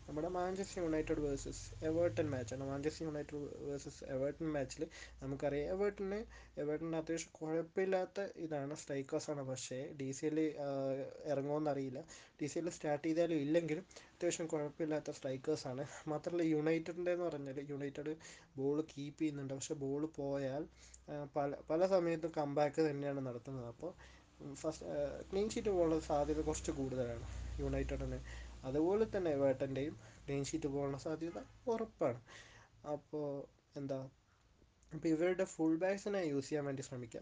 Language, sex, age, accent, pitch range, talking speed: Malayalam, male, 20-39, native, 135-160 Hz, 125 wpm